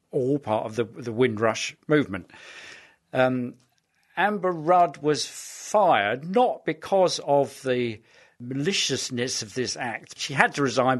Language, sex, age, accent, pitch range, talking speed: English, male, 50-69, British, 120-145 Hz, 130 wpm